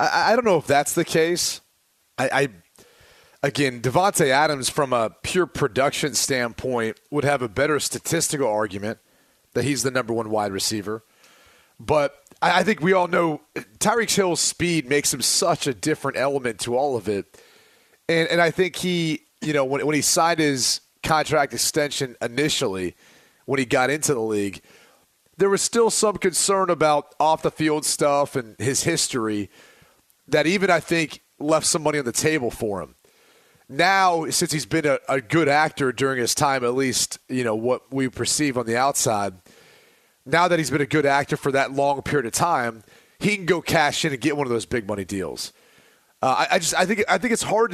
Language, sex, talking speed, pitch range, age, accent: English, male, 190 wpm, 130-165 Hz, 30-49, American